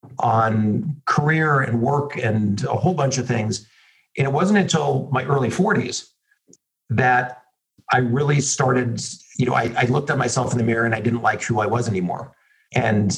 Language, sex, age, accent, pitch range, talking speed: English, male, 50-69, American, 115-135 Hz, 180 wpm